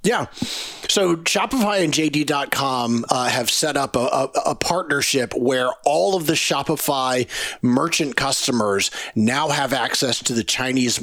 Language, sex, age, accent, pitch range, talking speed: English, male, 40-59, American, 120-145 Hz, 140 wpm